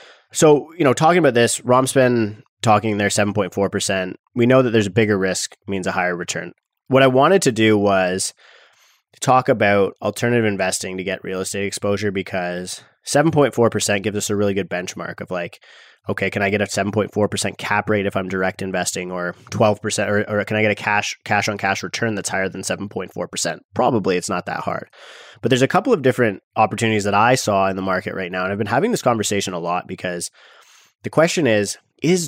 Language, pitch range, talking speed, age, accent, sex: English, 95-115 Hz, 215 wpm, 20-39, American, male